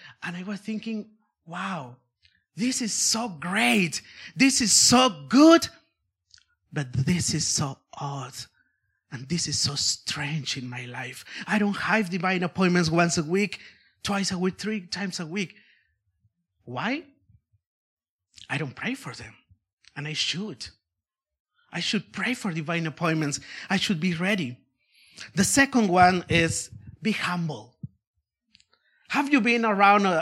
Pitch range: 145-220 Hz